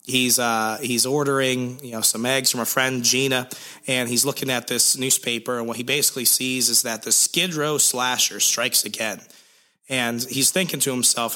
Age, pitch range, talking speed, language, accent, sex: 30-49, 120-150 Hz, 190 wpm, English, American, male